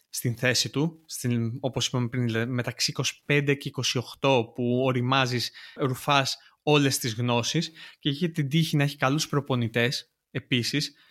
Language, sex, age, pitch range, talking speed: Greek, male, 20-39, 125-155 Hz, 140 wpm